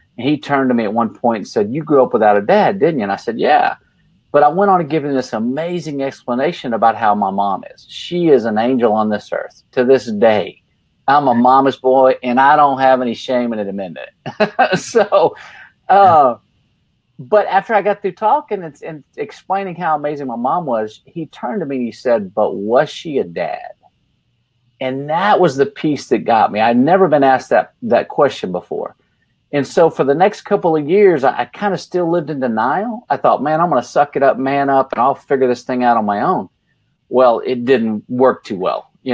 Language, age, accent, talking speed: English, 40-59, American, 220 wpm